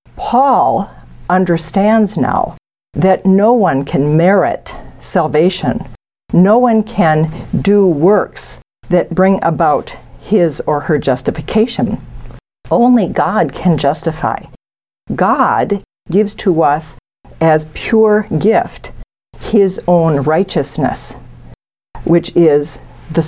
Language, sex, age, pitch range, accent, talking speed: English, female, 50-69, 150-200 Hz, American, 100 wpm